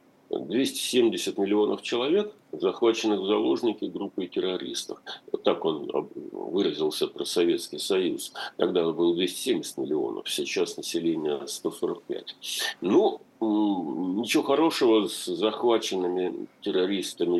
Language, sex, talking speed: Russian, male, 95 wpm